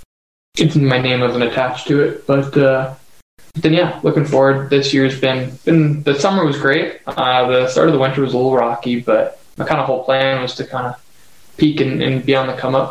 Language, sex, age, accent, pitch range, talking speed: English, male, 10-29, American, 125-145 Hz, 225 wpm